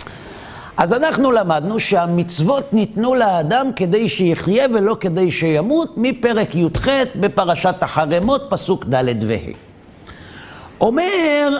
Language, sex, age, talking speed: Hebrew, male, 50-69, 100 wpm